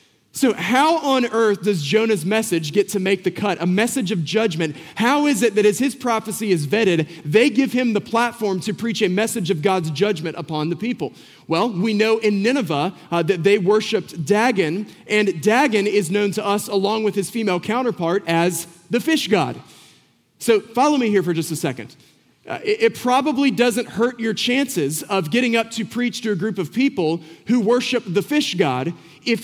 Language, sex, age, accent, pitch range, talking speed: English, male, 30-49, American, 180-235 Hz, 200 wpm